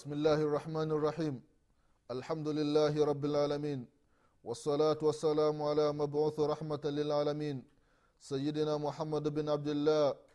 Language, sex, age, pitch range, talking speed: Swahili, male, 30-49, 135-160 Hz, 110 wpm